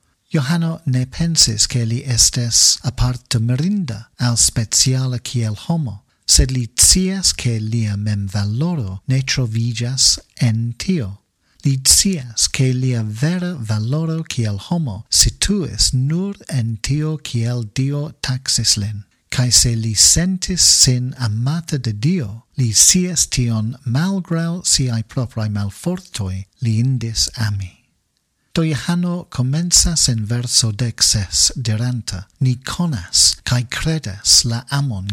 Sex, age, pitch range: male, 50-69, 110-150 Hz